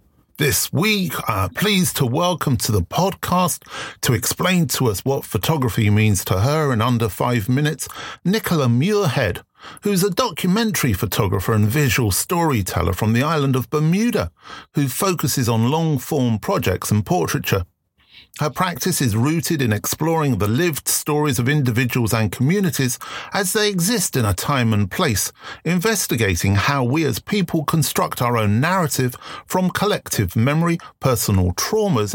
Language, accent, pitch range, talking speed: English, British, 110-160 Hz, 145 wpm